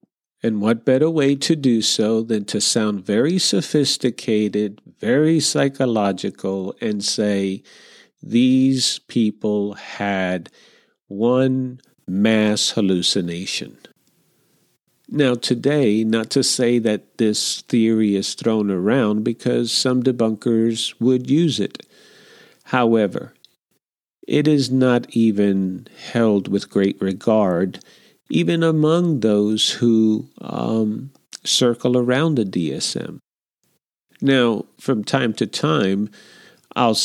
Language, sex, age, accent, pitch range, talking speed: English, male, 50-69, American, 105-130 Hz, 100 wpm